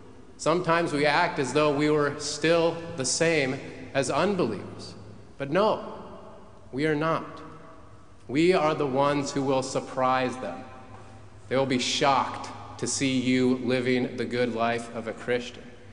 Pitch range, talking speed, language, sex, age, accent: 120-165 Hz, 145 wpm, English, male, 30-49, American